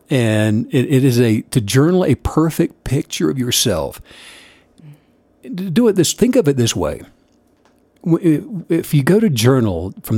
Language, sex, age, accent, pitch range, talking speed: English, male, 60-79, American, 125-170 Hz, 145 wpm